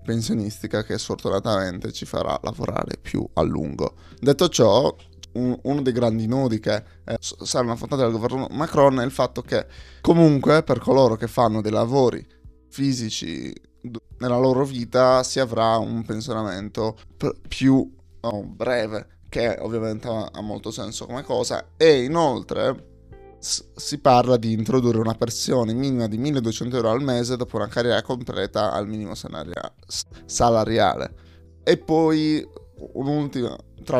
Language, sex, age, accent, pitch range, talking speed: Italian, male, 20-39, native, 110-130 Hz, 140 wpm